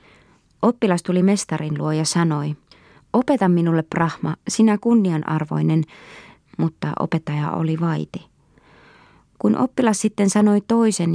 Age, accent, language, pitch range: 20-39, native, Finnish, 160-215 Hz